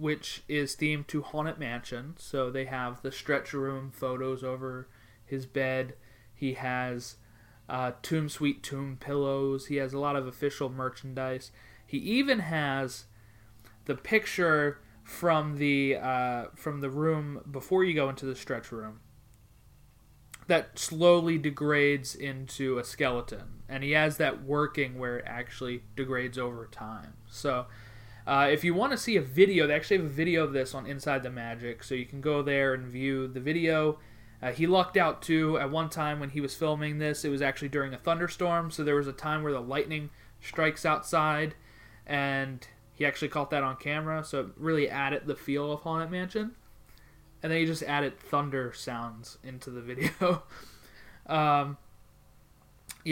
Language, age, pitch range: English, 20-39, 125-155 Hz